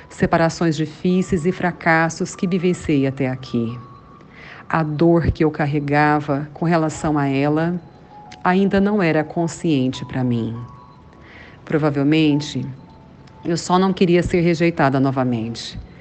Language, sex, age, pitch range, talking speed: Portuguese, female, 50-69, 140-180 Hz, 115 wpm